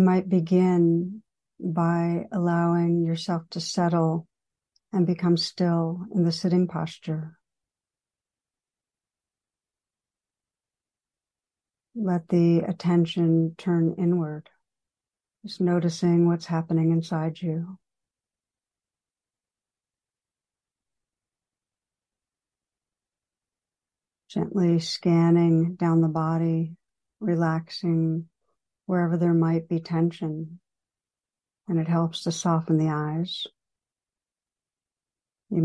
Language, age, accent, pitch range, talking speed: English, 60-79, American, 160-175 Hz, 75 wpm